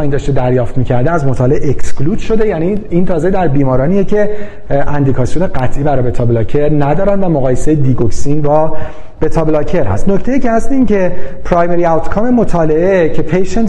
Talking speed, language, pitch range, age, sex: 160 wpm, Persian, 145-190 Hz, 40-59, male